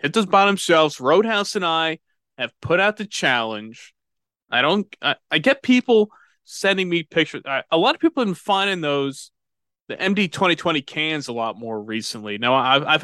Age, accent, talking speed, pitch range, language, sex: 30-49, American, 190 wpm, 130-160 Hz, English, male